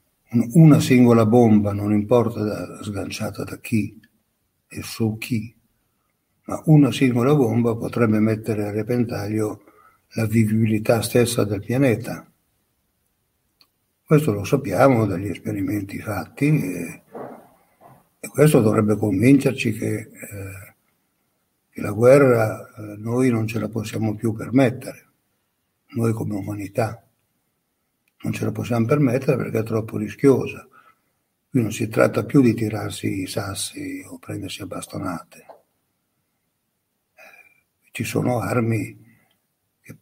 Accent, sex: native, male